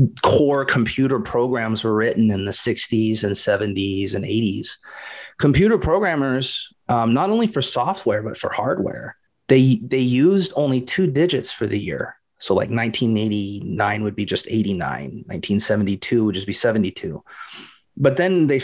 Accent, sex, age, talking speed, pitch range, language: American, male, 30-49, 150 wpm, 105-130 Hz, English